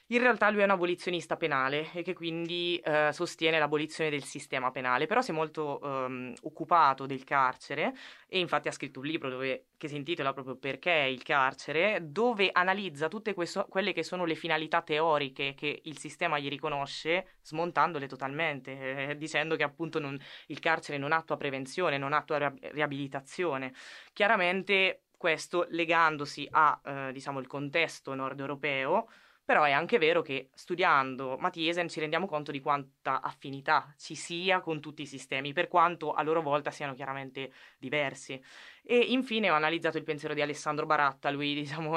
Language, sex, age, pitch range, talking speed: Italian, female, 20-39, 145-175 Hz, 165 wpm